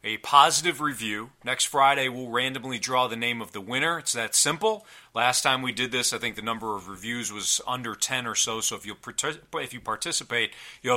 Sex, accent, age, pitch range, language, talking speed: male, American, 30-49, 105-125 Hz, English, 220 wpm